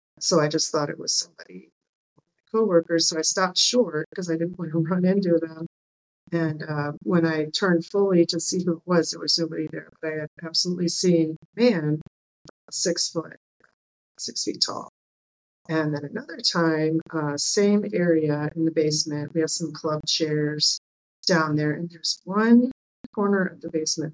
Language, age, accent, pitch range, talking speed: English, 40-59, American, 150-170 Hz, 180 wpm